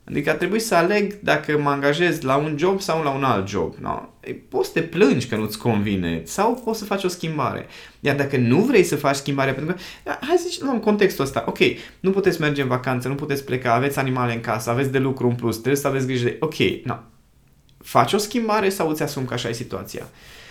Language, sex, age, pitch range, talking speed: Romanian, male, 20-39, 115-145 Hz, 235 wpm